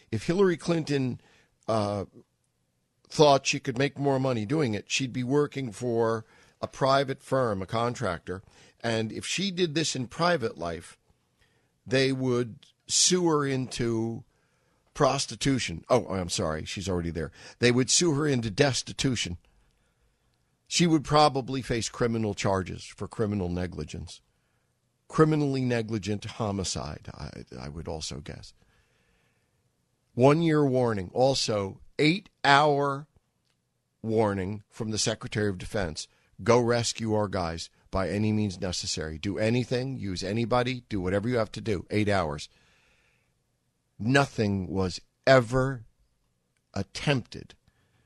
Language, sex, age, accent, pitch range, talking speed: English, male, 50-69, American, 95-130 Hz, 120 wpm